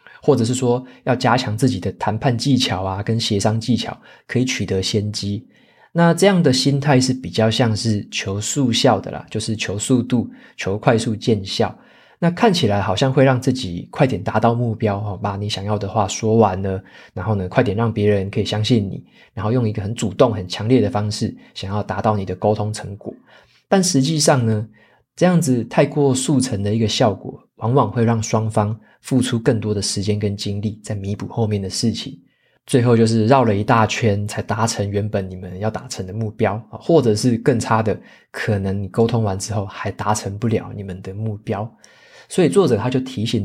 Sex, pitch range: male, 105-130 Hz